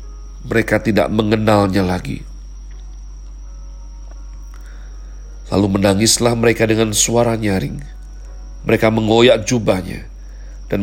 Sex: male